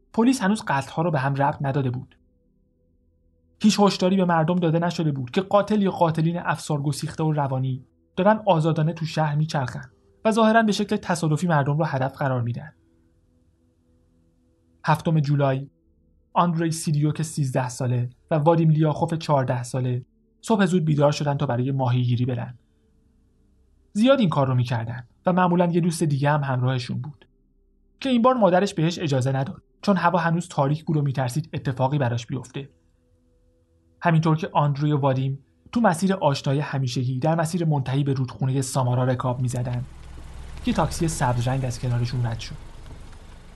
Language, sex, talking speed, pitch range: Persian, male, 155 wpm, 120-160 Hz